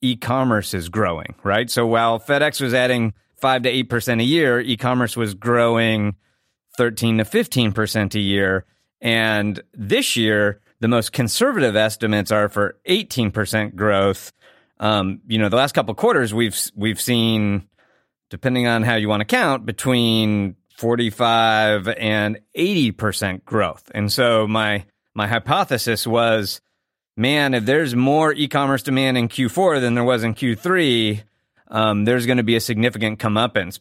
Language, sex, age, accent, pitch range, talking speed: English, male, 30-49, American, 105-125 Hz, 155 wpm